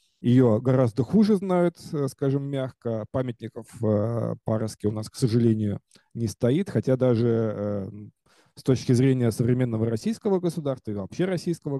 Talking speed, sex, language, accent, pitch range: 130 wpm, male, Russian, native, 110-145 Hz